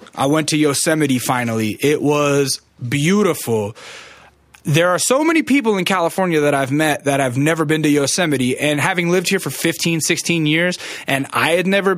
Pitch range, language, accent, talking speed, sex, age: 120-150 Hz, English, American, 180 wpm, male, 20-39